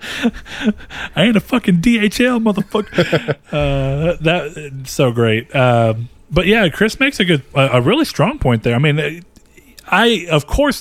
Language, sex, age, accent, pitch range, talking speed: English, male, 30-49, American, 110-150 Hz, 155 wpm